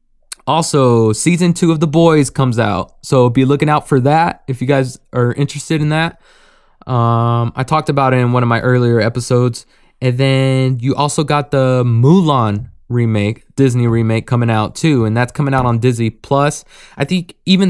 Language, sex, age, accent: English, male, 20-39, American